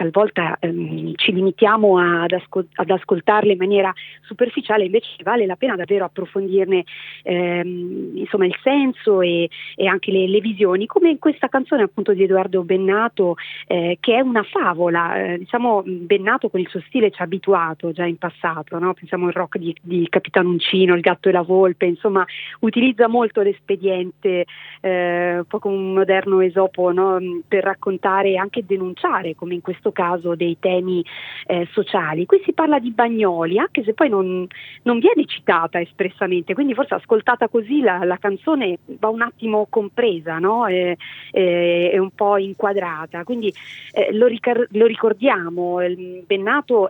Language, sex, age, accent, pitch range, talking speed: Italian, female, 30-49, native, 175-210 Hz, 160 wpm